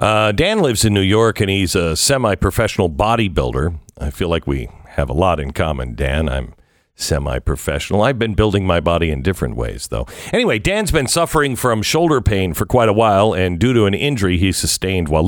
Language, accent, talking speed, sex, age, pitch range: English, American, 200 wpm, male, 50-69, 85-120 Hz